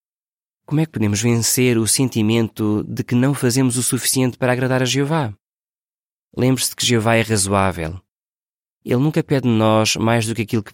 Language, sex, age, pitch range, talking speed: Portuguese, male, 20-39, 105-125 Hz, 180 wpm